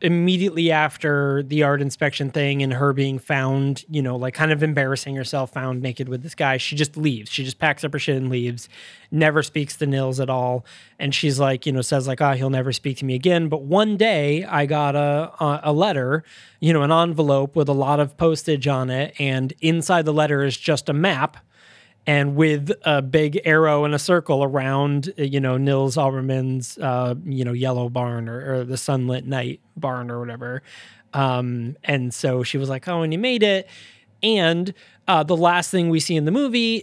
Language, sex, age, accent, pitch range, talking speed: English, male, 20-39, American, 135-160 Hz, 210 wpm